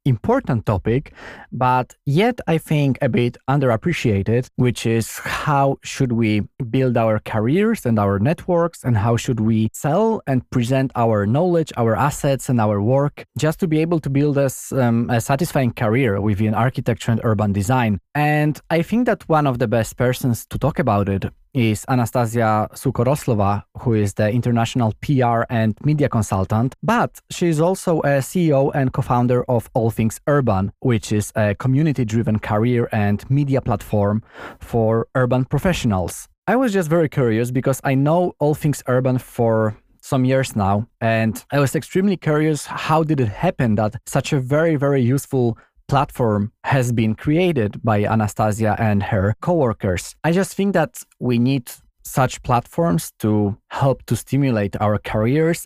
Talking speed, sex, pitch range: 160 wpm, male, 110-140 Hz